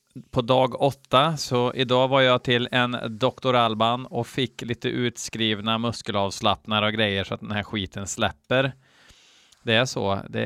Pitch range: 110-135 Hz